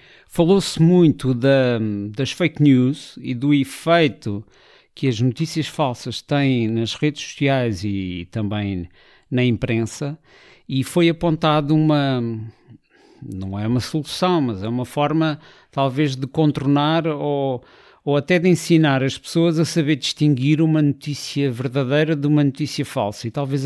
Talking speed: 135 wpm